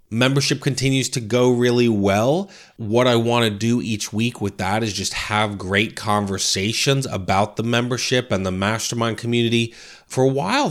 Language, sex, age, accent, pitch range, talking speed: English, male, 30-49, American, 100-120 Hz, 170 wpm